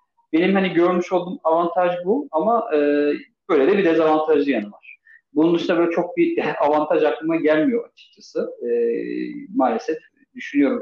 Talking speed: 135 wpm